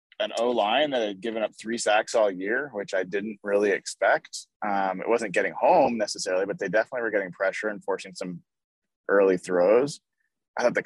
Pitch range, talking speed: 95-130 Hz, 195 wpm